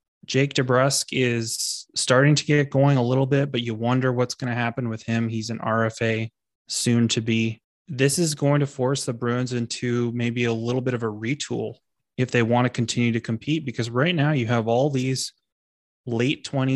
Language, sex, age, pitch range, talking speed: English, male, 20-39, 115-135 Hz, 195 wpm